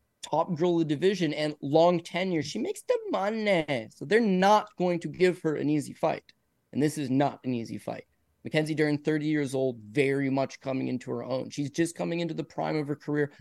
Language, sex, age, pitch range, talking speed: English, male, 20-39, 145-185 Hz, 220 wpm